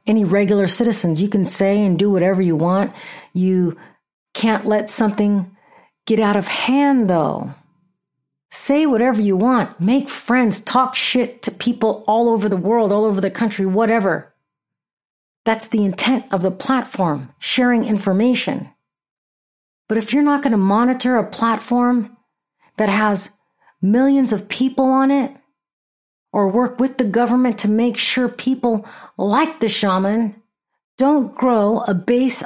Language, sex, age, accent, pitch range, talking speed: English, female, 40-59, American, 195-245 Hz, 145 wpm